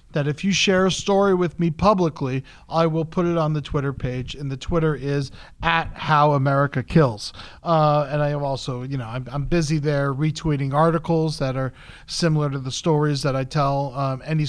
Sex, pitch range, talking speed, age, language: male, 140-175 Hz, 205 wpm, 40-59, English